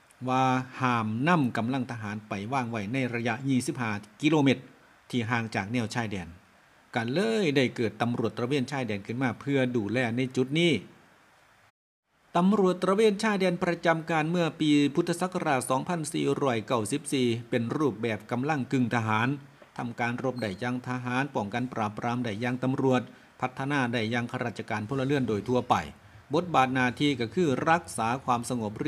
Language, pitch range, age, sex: Thai, 115-140 Hz, 60-79, male